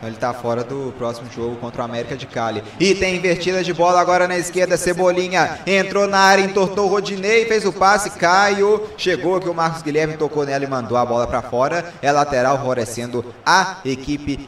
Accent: Brazilian